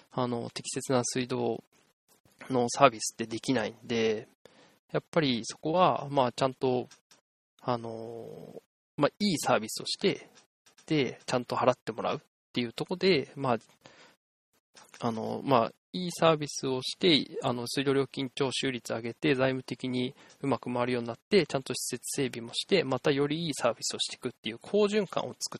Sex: male